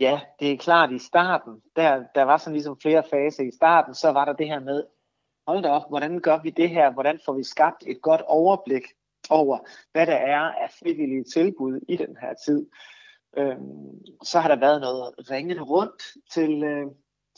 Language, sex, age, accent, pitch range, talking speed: Danish, male, 30-49, native, 130-155 Hz, 195 wpm